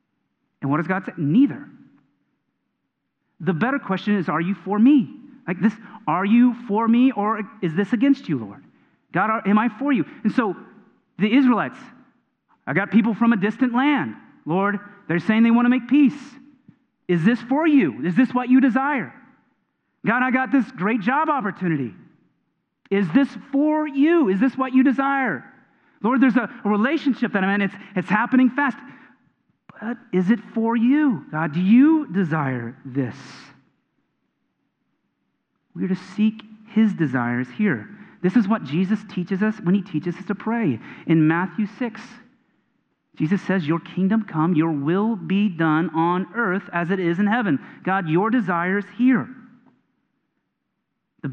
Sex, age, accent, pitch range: male, 30-49, American, 185-250 Hz